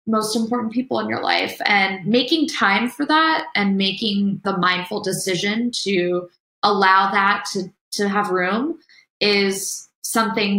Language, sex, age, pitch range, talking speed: English, female, 20-39, 185-215 Hz, 140 wpm